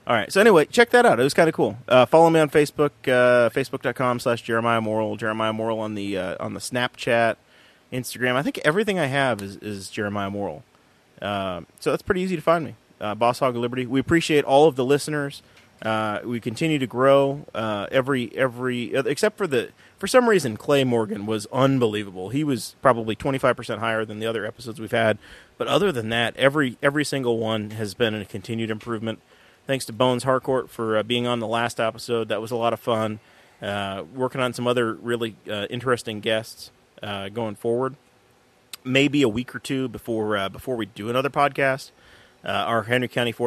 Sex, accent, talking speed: male, American, 205 wpm